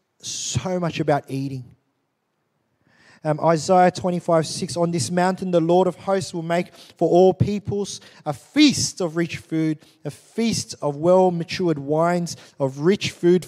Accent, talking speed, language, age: Australian, 150 wpm, English, 20-39